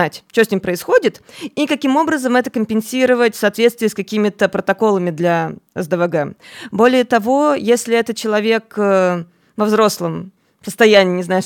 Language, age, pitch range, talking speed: Russian, 20-39, 180-235 Hz, 135 wpm